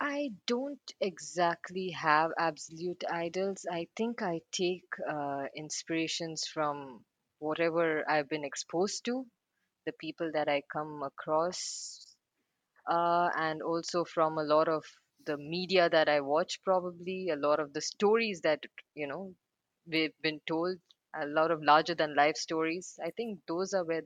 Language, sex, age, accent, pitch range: Chinese, female, 20-39, Indian, 145-180 Hz